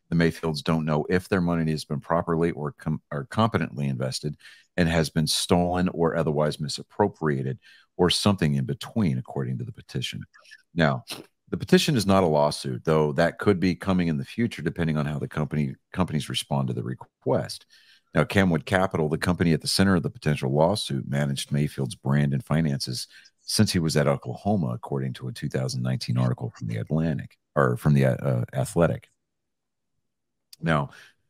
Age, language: 50-69, English